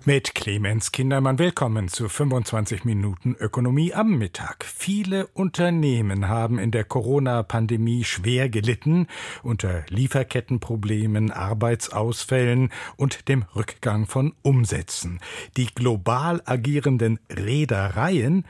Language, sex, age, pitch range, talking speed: German, male, 60-79, 105-140 Hz, 95 wpm